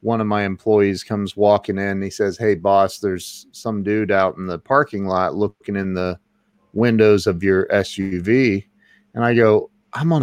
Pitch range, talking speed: 105-140 Hz, 180 wpm